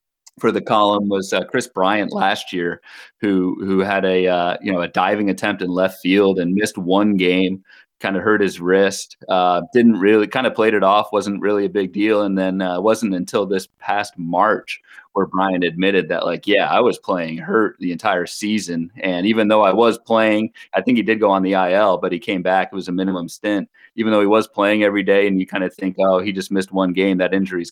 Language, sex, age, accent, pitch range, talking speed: English, male, 30-49, American, 95-110 Hz, 240 wpm